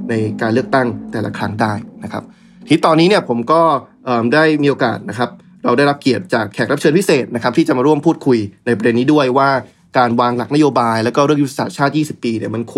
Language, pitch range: Thai, 115-145 Hz